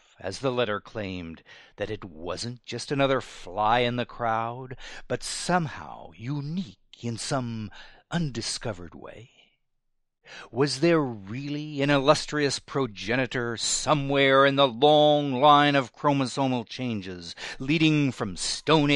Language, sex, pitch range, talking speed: English, male, 100-145 Hz, 115 wpm